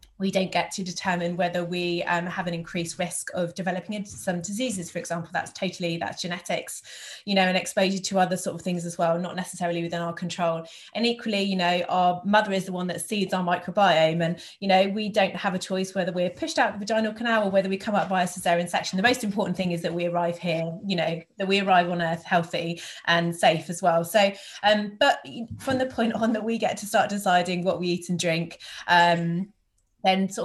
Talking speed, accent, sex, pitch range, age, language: 235 wpm, British, female, 170-195 Hz, 20-39, English